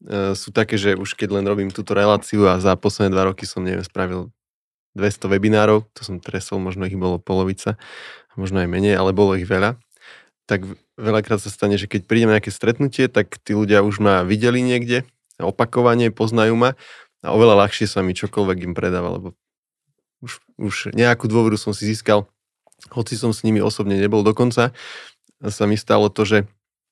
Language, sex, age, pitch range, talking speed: Slovak, male, 20-39, 95-110 Hz, 180 wpm